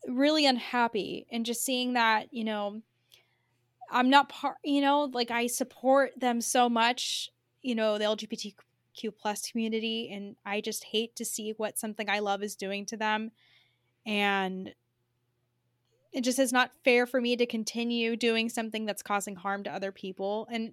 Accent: American